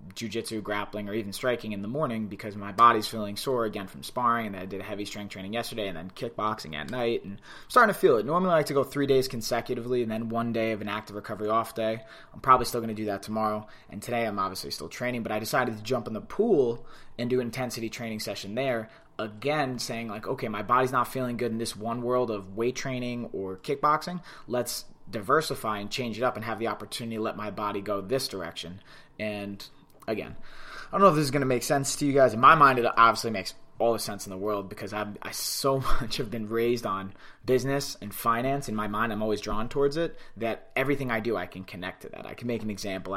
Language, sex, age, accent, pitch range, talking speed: English, male, 20-39, American, 105-125 Hz, 245 wpm